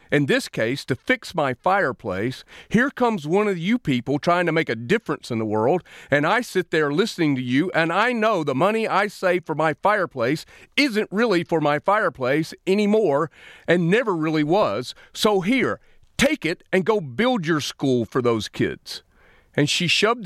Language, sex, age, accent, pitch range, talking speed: English, male, 40-59, American, 130-195 Hz, 185 wpm